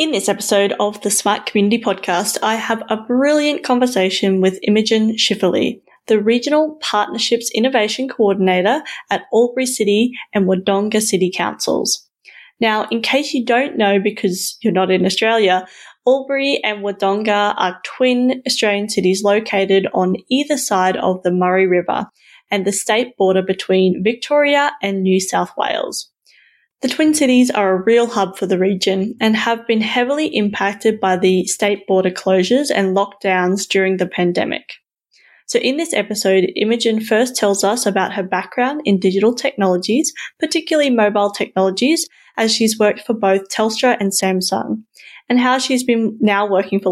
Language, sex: English, female